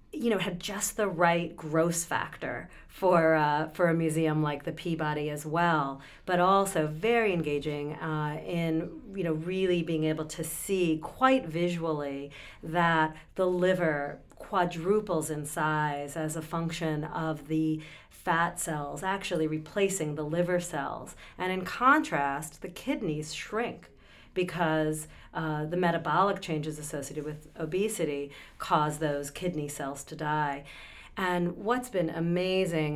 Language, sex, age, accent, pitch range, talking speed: English, female, 40-59, American, 150-180 Hz, 135 wpm